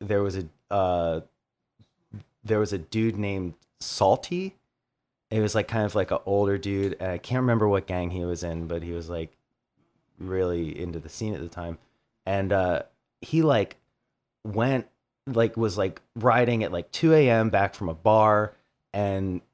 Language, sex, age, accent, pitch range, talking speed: English, male, 30-49, American, 100-130 Hz, 175 wpm